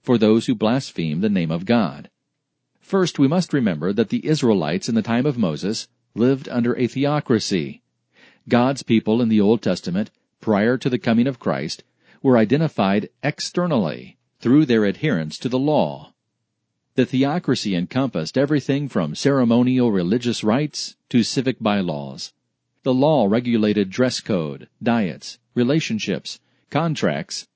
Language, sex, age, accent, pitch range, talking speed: English, male, 40-59, American, 110-140 Hz, 140 wpm